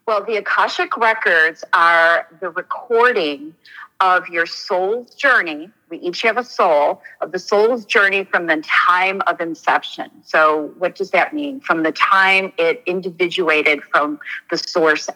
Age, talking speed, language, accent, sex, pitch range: 40-59, 150 wpm, English, American, female, 170-235 Hz